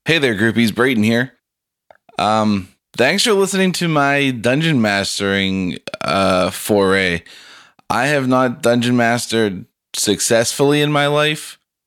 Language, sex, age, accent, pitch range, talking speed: English, male, 20-39, American, 105-130 Hz, 120 wpm